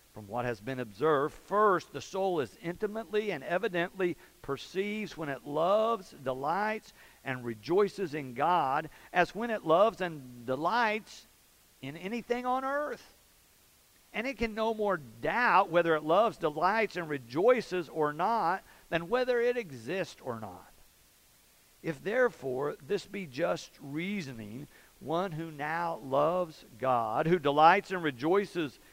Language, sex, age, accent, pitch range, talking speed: English, male, 50-69, American, 125-195 Hz, 135 wpm